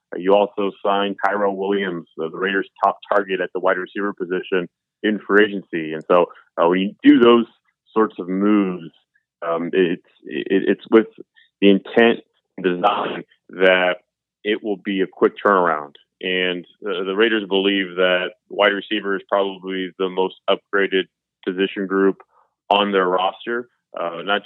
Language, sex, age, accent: English, male, 30-49, American